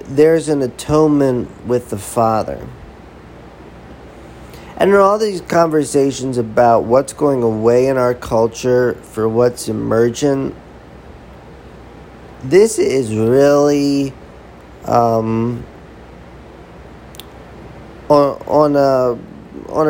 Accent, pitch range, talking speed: American, 115-145 Hz, 85 wpm